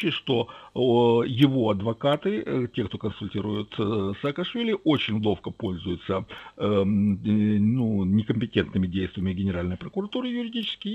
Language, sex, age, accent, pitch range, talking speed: Russian, male, 60-79, native, 100-145 Hz, 90 wpm